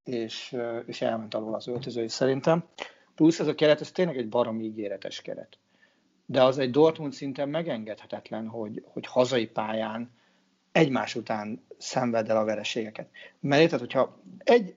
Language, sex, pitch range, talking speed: Hungarian, male, 120-175 Hz, 150 wpm